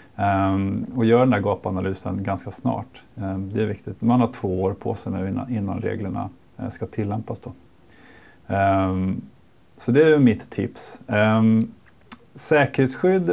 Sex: male